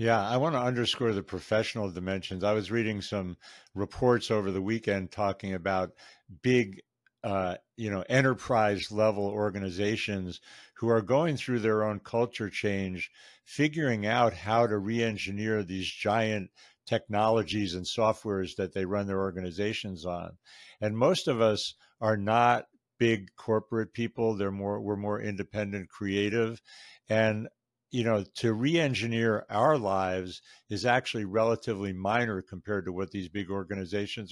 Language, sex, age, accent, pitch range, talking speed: English, male, 60-79, American, 100-115 Hz, 140 wpm